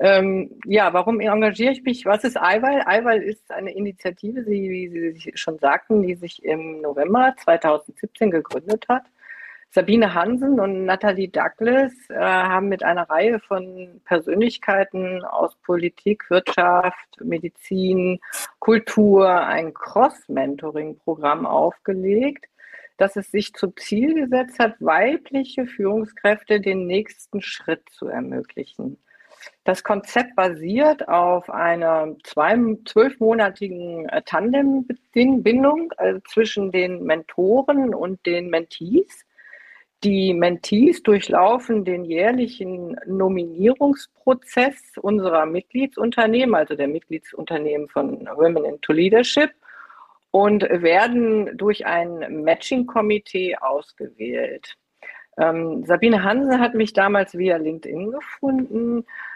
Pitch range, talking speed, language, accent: 175-235 Hz, 105 wpm, German, German